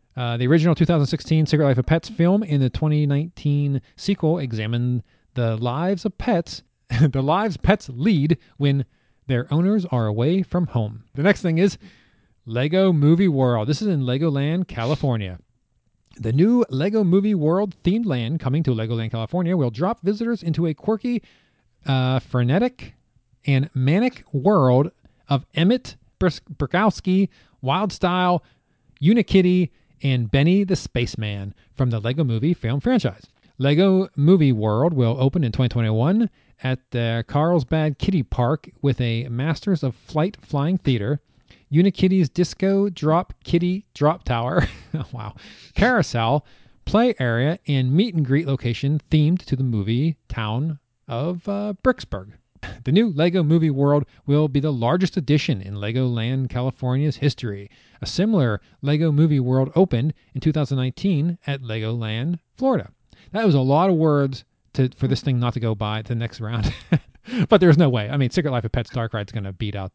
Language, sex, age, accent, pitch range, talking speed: English, male, 30-49, American, 120-175 Hz, 155 wpm